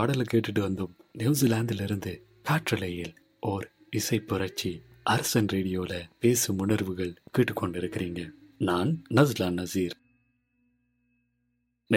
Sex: male